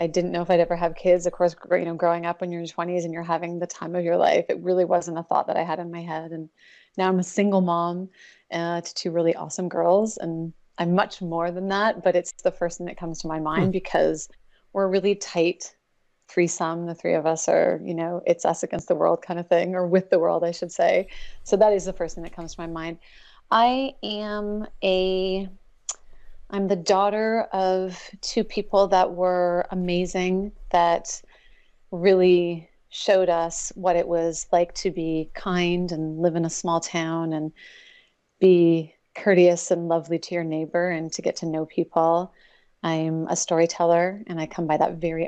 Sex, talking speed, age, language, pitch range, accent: female, 205 wpm, 30-49, English, 165-185 Hz, American